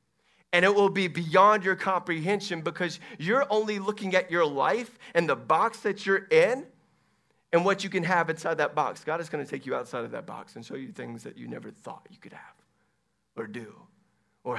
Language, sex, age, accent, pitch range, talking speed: English, male, 30-49, American, 135-195 Hz, 210 wpm